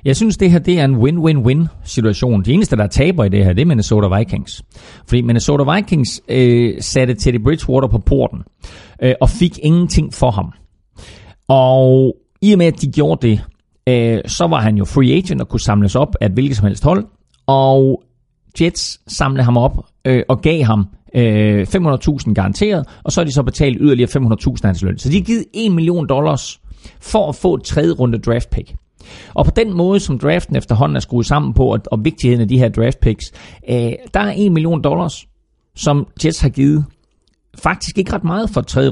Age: 40-59